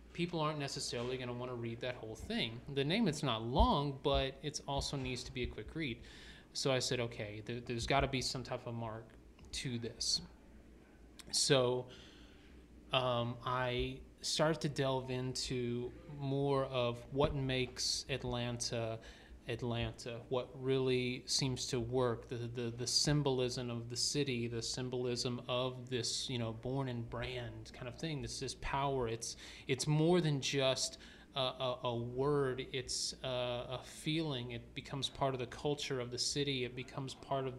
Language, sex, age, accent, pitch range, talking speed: English, male, 30-49, American, 120-135 Hz, 170 wpm